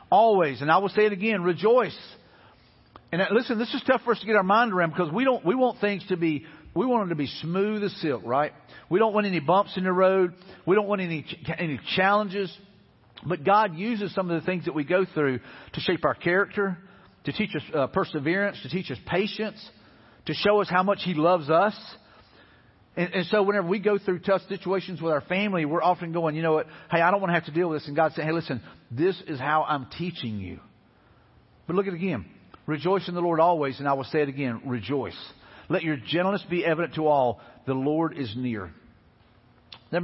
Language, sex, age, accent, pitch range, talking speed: English, male, 50-69, American, 140-190 Hz, 225 wpm